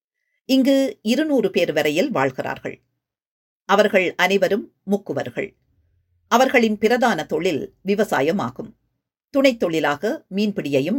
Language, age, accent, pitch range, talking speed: Tamil, 50-69, native, 175-245 Hz, 75 wpm